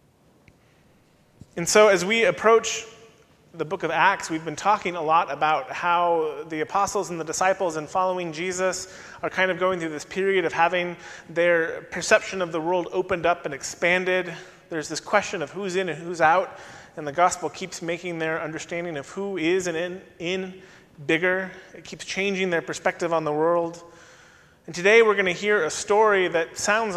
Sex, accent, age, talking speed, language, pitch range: male, American, 30-49, 185 wpm, English, 160-185 Hz